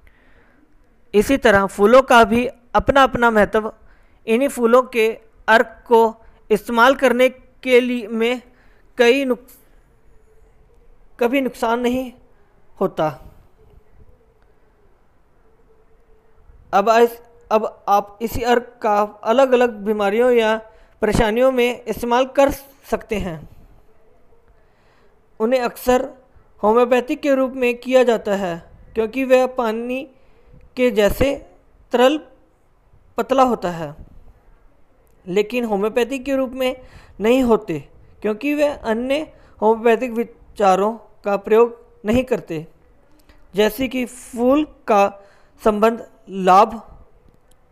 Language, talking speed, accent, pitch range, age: Hindi, 100 wpm, native, 215-255 Hz, 20-39